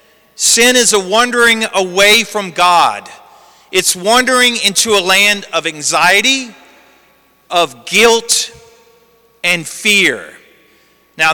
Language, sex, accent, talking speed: English, male, American, 100 wpm